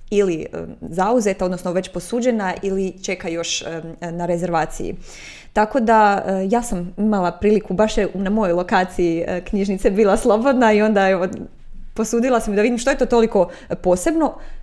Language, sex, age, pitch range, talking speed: Croatian, female, 20-39, 180-220 Hz, 150 wpm